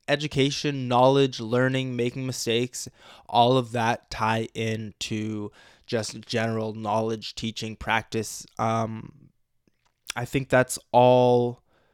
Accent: American